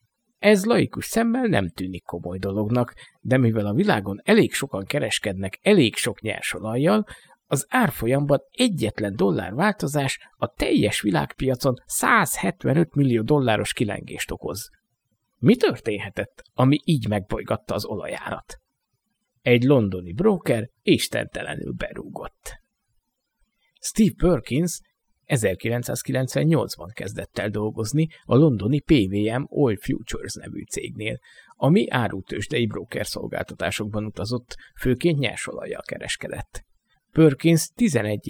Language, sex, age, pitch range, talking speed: Hungarian, male, 50-69, 105-150 Hz, 100 wpm